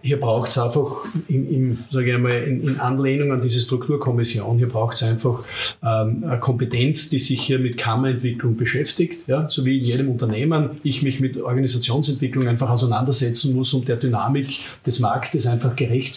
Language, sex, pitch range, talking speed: German, male, 125-145 Hz, 180 wpm